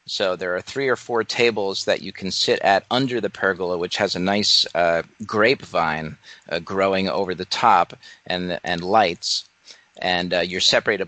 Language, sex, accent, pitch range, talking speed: English, male, American, 95-120 Hz, 180 wpm